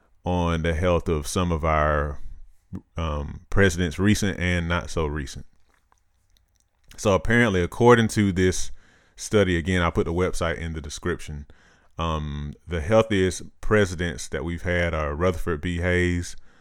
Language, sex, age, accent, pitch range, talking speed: English, male, 30-49, American, 80-90 Hz, 140 wpm